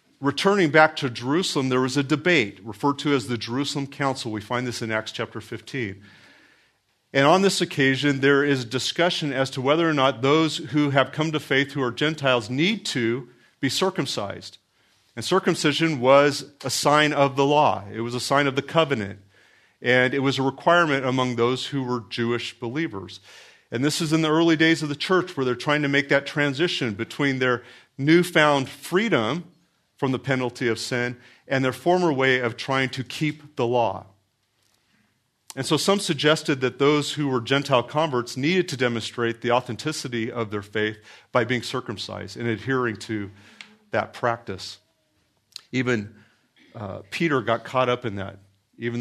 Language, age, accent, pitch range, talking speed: English, 40-59, American, 115-150 Hz, 175 wpm